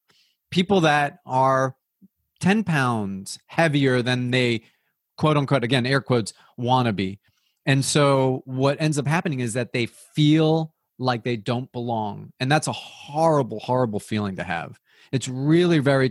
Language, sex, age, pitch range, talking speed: English, male, 30-49, 115-155 Hz, 155 wpm